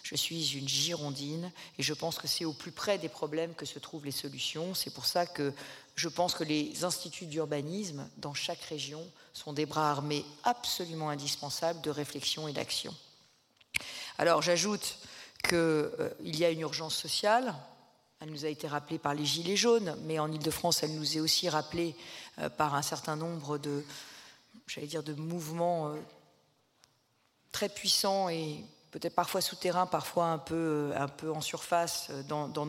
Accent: French